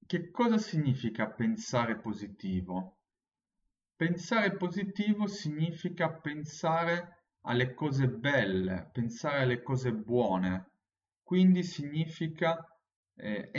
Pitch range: 100-165 Hz